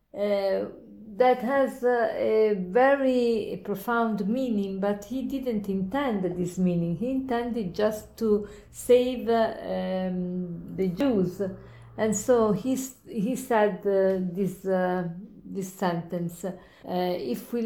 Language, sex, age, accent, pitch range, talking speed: English, female, 50-69, Italian, 195-235 Hz, 120 wpm